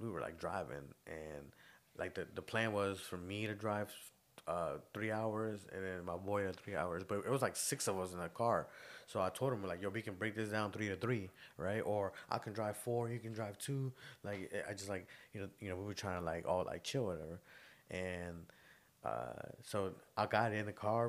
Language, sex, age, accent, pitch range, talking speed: English, male, 20-39, American, 95-115 Hz, 240 wpm